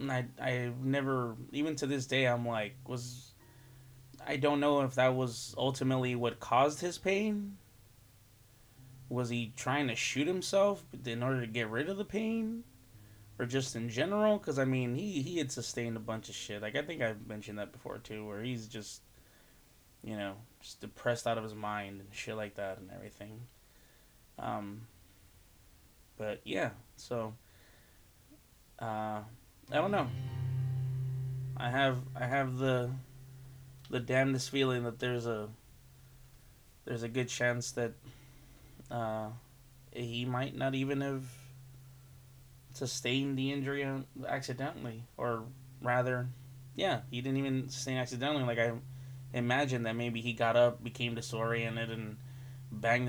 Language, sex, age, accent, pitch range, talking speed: English, male, 20-39, American, 115-130 Hz, 145 wpm